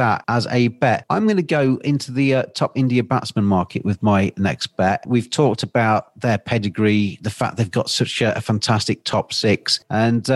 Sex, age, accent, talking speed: male, 40-59, British, 205 wpm